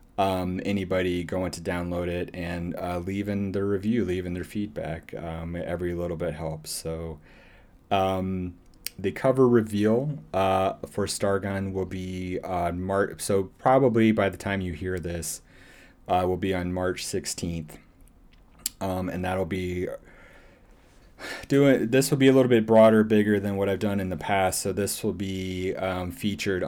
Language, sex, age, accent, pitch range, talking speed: English, male, 30-49, American, 85-100 Hz, 160 wpm